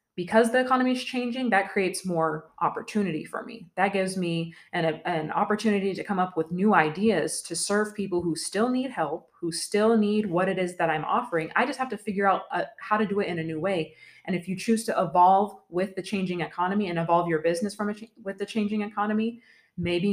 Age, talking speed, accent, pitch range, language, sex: 20-39, 230 wpm, American, 175-205 Hz, English, female